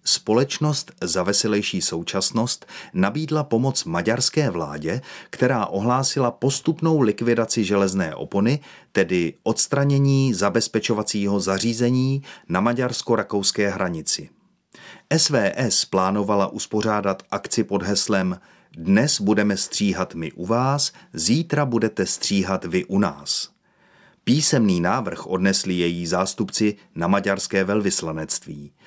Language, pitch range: Czech, 95-125 Hz